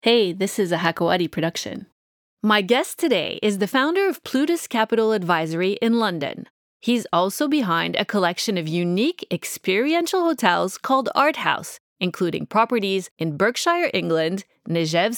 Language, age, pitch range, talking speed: English, 30-49, 180-275 Hz, 140 wpm